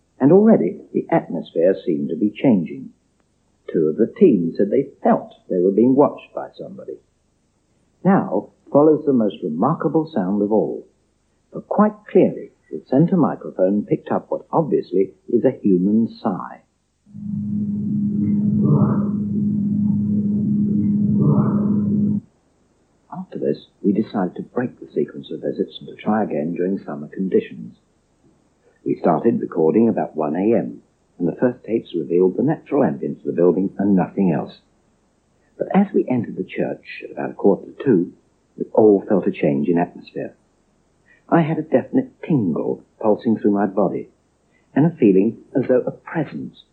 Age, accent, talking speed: 60-79, British, 150 wpm